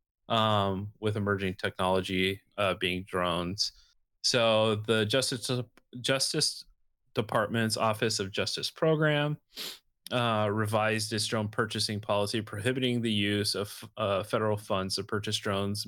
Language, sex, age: English, male, 30-49